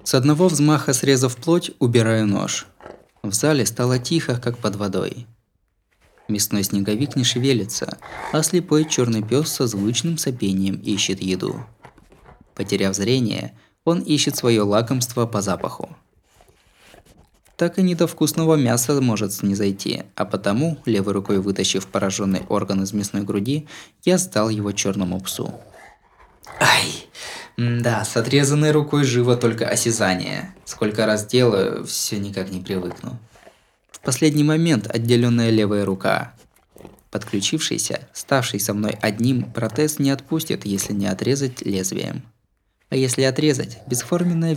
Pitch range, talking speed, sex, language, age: 100-140 Hz, 130 wpm, male, Russian, 20-39